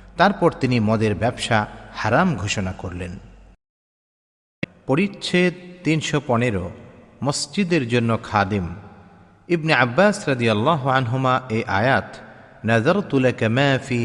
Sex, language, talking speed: male, Bengali, 85 wpm